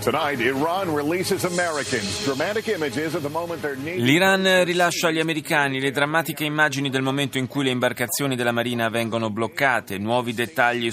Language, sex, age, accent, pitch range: Italian, male, 30-49, native, 115-145 Hz